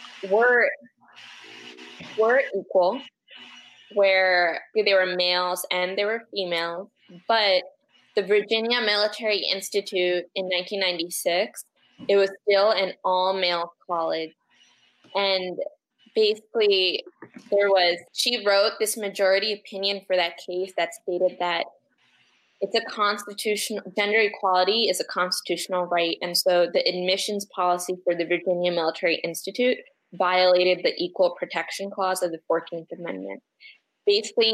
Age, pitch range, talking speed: 20-39, 180-210 Hz, 120 wpm